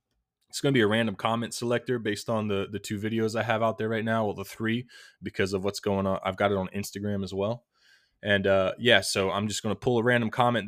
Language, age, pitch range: English, 20-39, 100-110 Hz